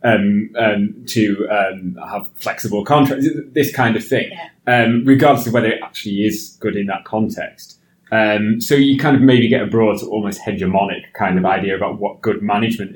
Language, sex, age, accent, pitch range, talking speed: English, male, 20-39, British, 115-155 Hz, 185 wpm